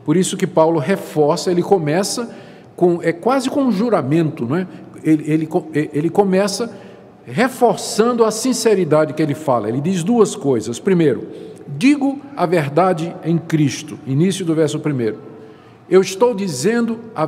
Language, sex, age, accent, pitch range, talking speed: Portuguese, male, 50-69, Brazilian, 155-220 Hz, 150 wpm